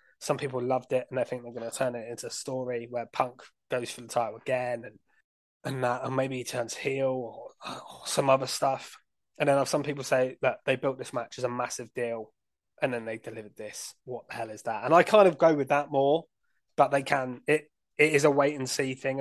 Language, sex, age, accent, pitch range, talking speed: English, male, 20-39, British, 125-140 Hz, 245 wpm